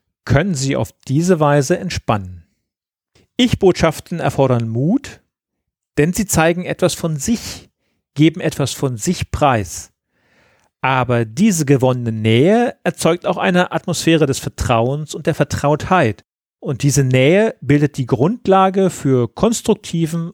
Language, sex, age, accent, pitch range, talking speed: German, male, 40-59, German, 125-170 Hz, 120 wpm